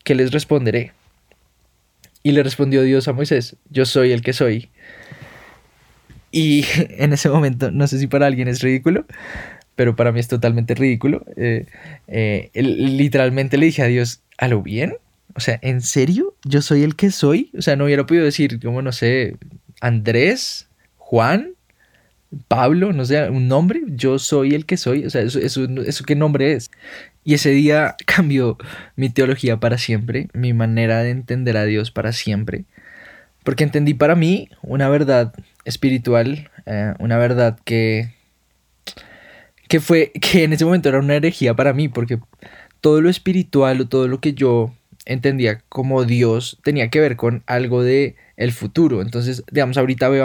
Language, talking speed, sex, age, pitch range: Spanish, 170 wpm, male, 20-39, 120-145 Hz